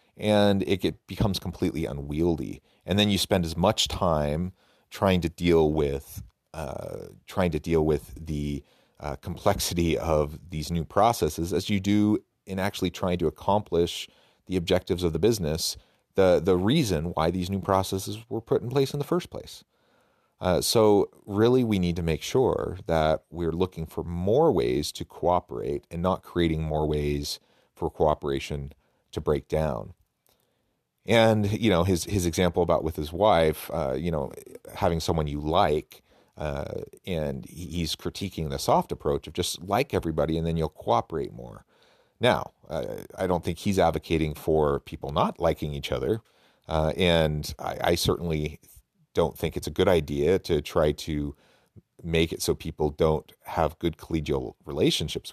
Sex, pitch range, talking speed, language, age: male, 80-95 Hz, 165 wpm, English, 30-49